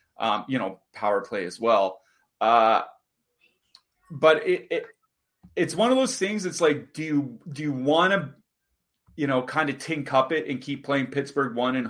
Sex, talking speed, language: male, 185 wpm, English